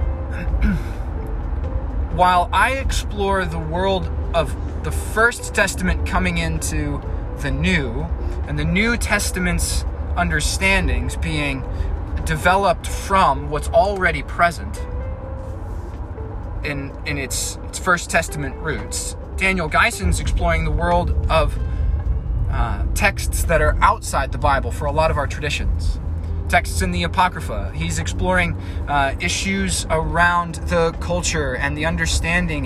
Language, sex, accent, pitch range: English, male, American, 80-90 Hz